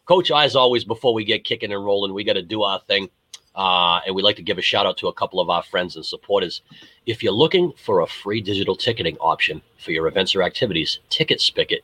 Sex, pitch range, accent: male, 105-165 Hz, American